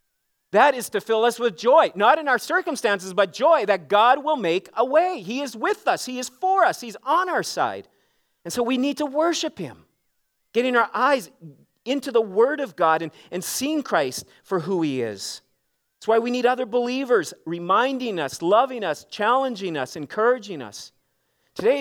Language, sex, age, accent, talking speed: English, male, 40-59, American, 190 wpm